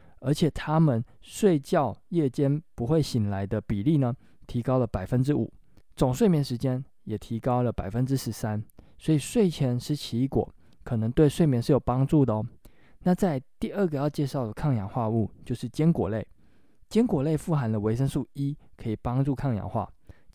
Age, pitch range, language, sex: 20-39, 115-150 Hz, Chinese, male